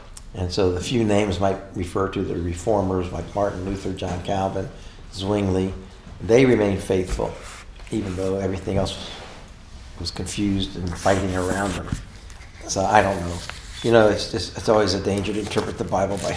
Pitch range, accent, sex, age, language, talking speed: 90-110 Hz, American, male, 60-79, English, 165 wpm